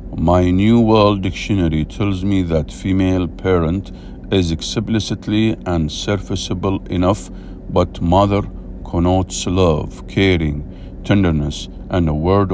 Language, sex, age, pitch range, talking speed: English, male, 50-69, 85-100 Hz, 110 wpm